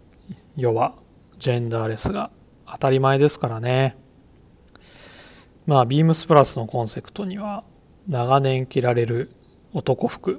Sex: male